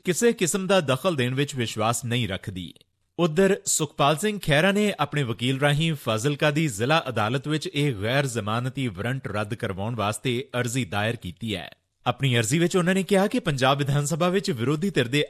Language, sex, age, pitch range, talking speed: Punjabi, male, 30-49, 115-160 Hz, 185 wpm